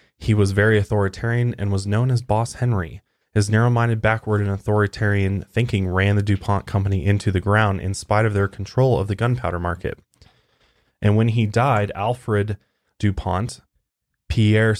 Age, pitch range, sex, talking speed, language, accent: 20-39, 95-110 Hz, male, 160 wpm, English, American